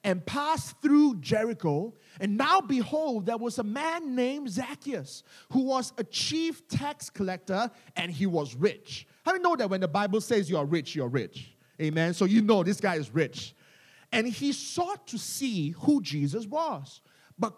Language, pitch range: English, 170-255 Hz